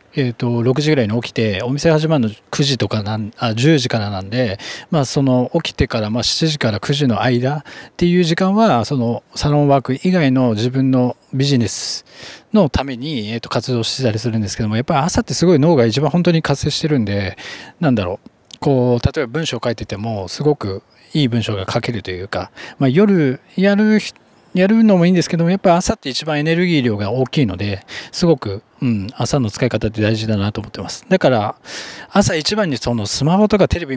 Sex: male